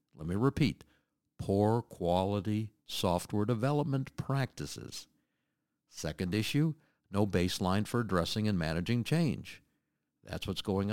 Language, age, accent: English, 60-79, American